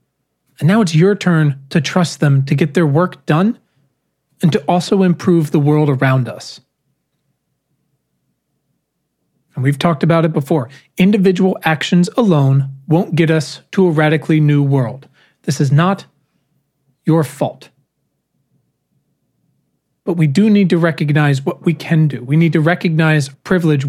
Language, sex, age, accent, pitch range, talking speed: English, male, 40-59, American, 145-185 Hz, 145 wpm